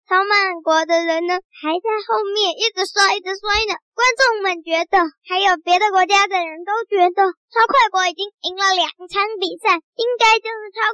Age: 10-29